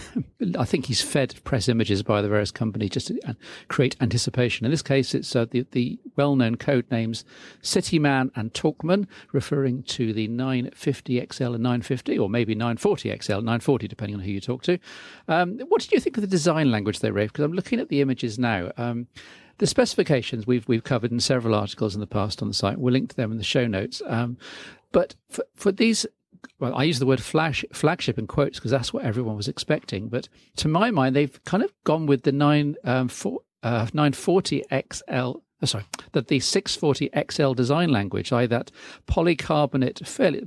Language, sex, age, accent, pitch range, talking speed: English, male, 50-69, British, 120-150 Hz, 220 wpm